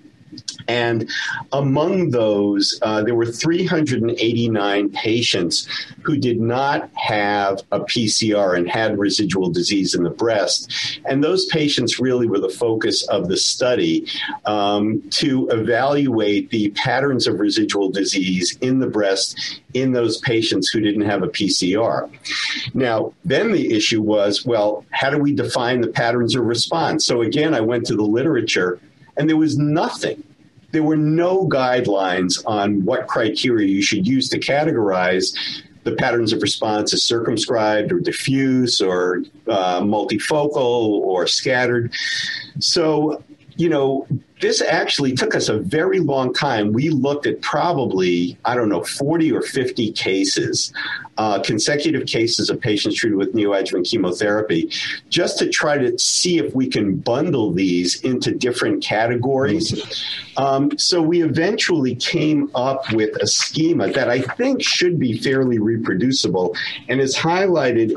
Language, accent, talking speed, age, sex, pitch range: English, American, 145 wpm, 50-69, male, 105-150 Hz